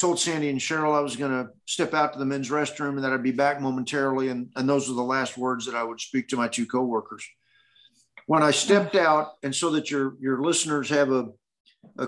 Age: 50-69